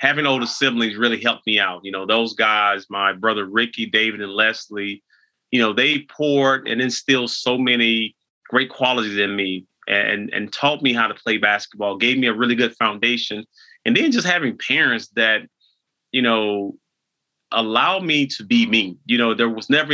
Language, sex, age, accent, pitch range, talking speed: English, male, 30-49, American, 110-130 Hz, 185 wpm